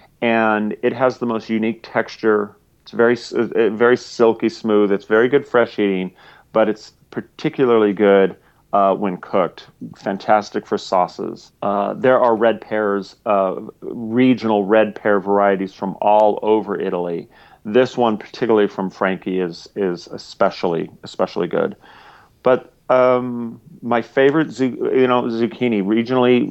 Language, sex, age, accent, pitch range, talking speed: English, male, 40-59, American, 100-120 Hz, 135 wpm